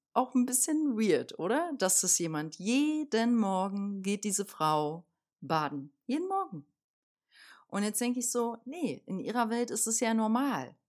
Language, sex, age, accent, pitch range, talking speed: German, female, 40-59, German, 175-235 Hz, 160 wpm